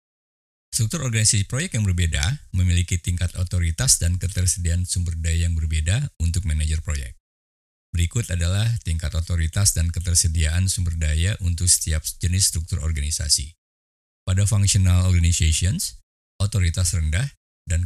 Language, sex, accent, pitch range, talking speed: Indonesian, male, native, 80-95 Hz, 120 wpm